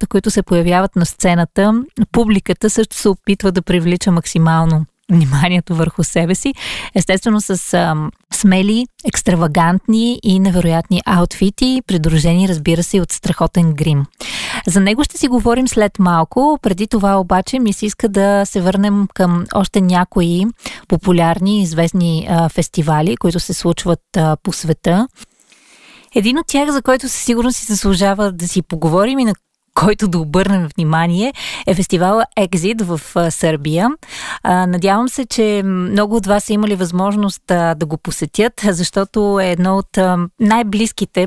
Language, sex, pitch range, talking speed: Bulgarian, female, 175-210 Hz, 150 wpm